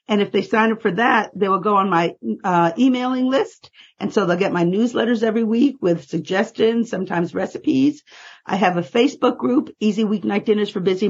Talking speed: 200 wpm